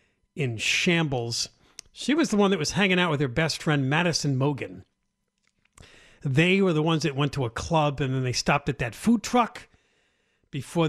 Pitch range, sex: 125-180 Hz, male